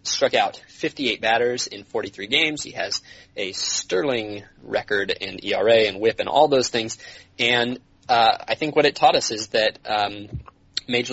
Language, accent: English, American